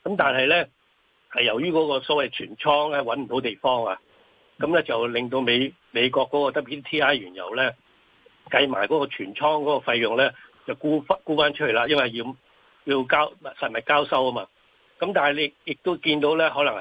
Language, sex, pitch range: Chinese, male, 130-150 Hz